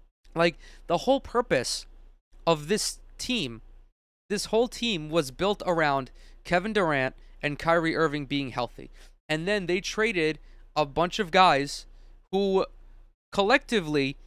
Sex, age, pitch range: male, 20-39, 150-200 Hz